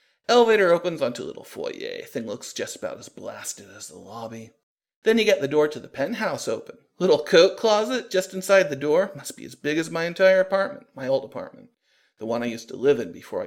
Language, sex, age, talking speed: English, male, 40-59, 220 wpm